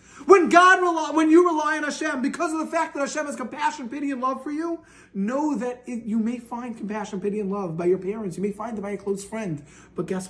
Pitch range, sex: 235-325 Hz, male